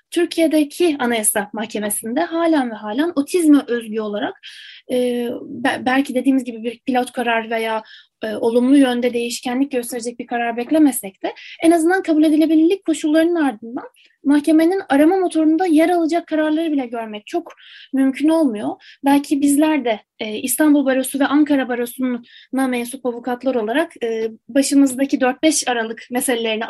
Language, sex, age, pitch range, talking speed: Turkish, female, 10-29, 240-325 Hz, 135 wpm